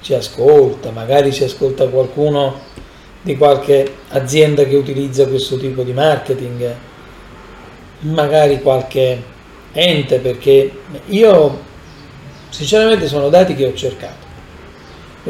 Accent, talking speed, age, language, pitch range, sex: native, 105 wpm, 40-59, Italian, 130-170 Hz, male